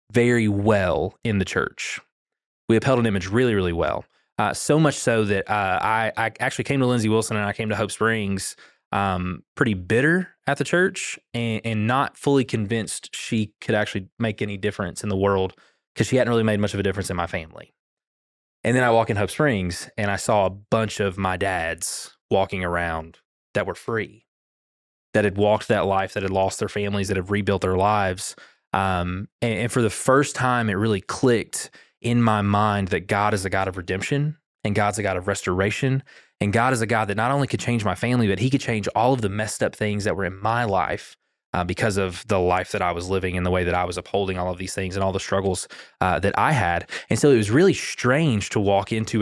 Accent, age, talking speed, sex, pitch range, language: American, 20-39, 230 wpm, male, 95-115 Hz, English